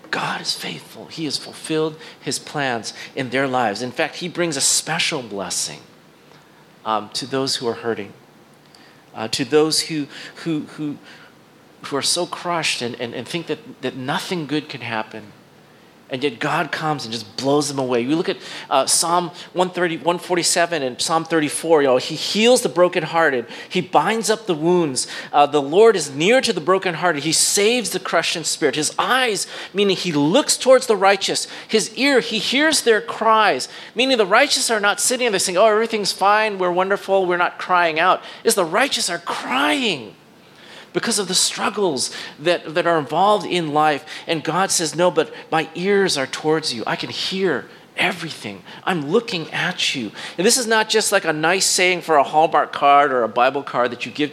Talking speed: 190 wpm